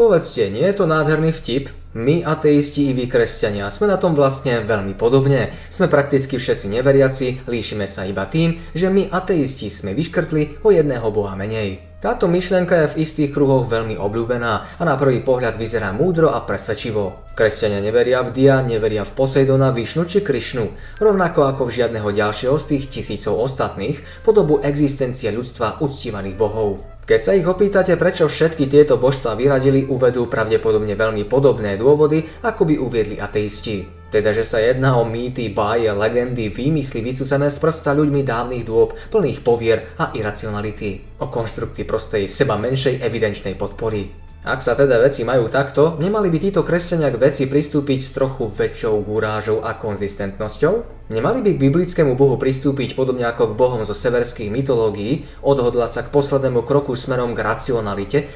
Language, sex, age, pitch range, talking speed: Slovak, male, 20-39, 110-145 Hz, 160 wpm